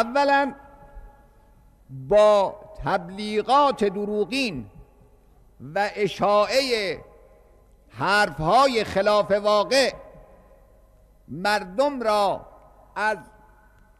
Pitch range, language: 180-230 Hz, Persian